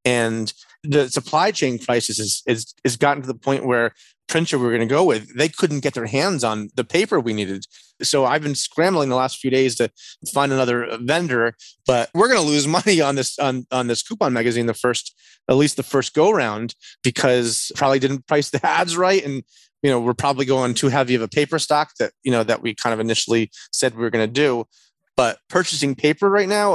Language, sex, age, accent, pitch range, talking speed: English, male, 30-49, American, 120-150 Hz, 225 wpm